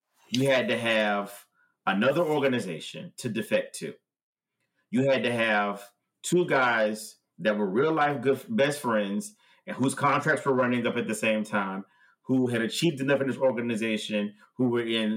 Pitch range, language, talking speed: 115-160 Hz, English, 160 wpm